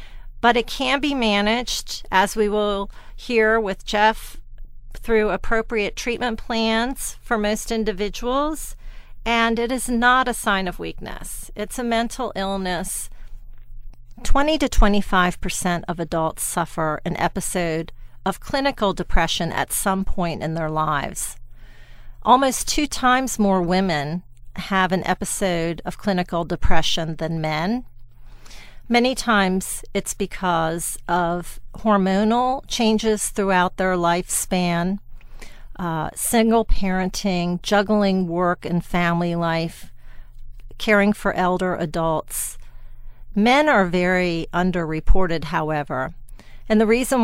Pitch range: 165-215 Hz